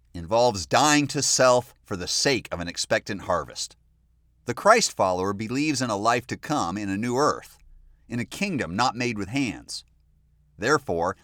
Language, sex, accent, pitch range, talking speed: English, male, American, 90-140 Hz, 170 wpm